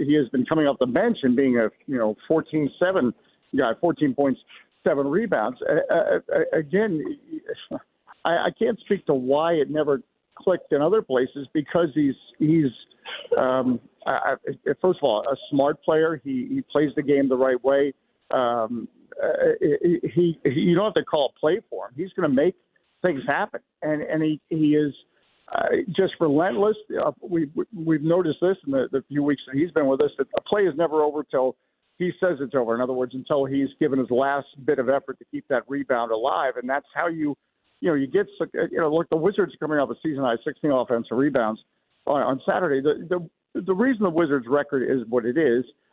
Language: English